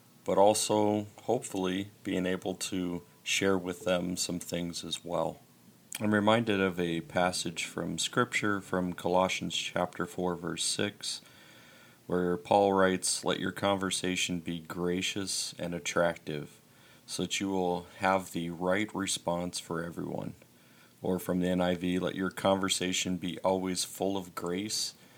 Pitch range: 90-100 Hz